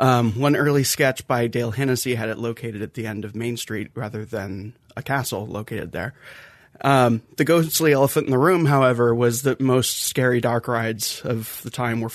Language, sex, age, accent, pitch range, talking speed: English, male, 30-49, American, 115-135 Hz, 200 wpm